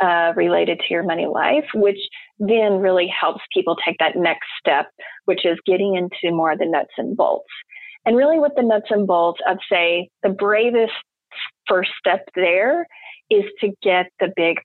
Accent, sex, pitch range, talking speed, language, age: American, female, 175-210 Hz, 180 wpm, English, 30-49